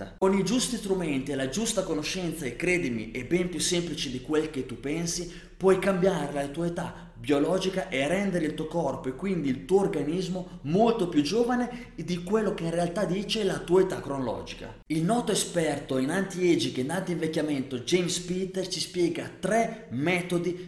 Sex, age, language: male, 30-49, Italian